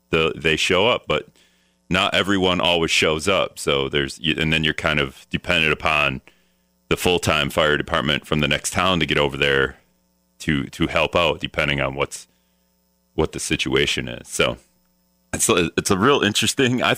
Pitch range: 65-85 Hz